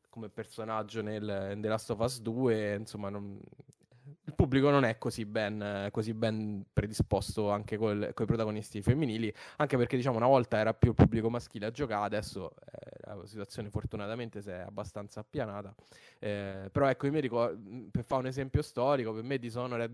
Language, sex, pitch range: Italian, male, 105-120 Hz